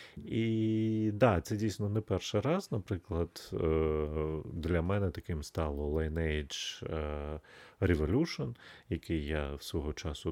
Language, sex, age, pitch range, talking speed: Ukrainian, male, 30-49, 80-100 Hz, 110 wpm